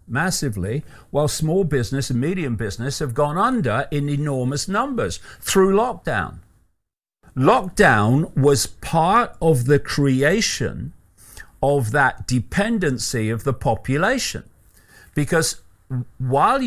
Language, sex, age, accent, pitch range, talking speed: English, male, 50-69, British, 105-160 Hz, 105 wpm